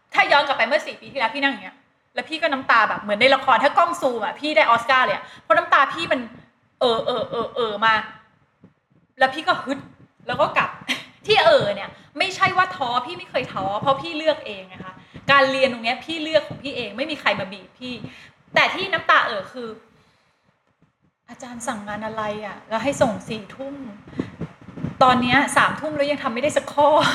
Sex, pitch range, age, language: female, 235-315 Hz, 20-39, Thai